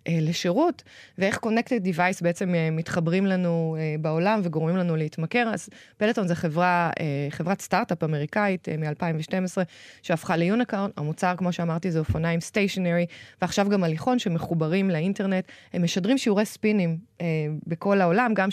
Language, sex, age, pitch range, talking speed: Hebrew, female, 20-39, 165-195 Hz, 125 wpm